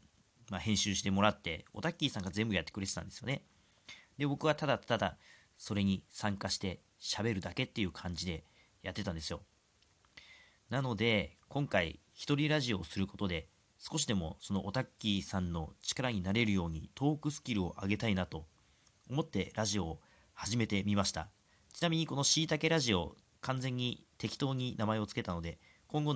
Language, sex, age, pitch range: Japanese, male, 40-59, 95-130 Hz